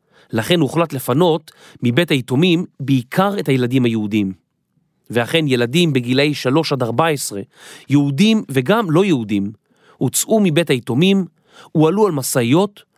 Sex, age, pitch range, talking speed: male, 30-49, 130-180 Hz, 115 wpm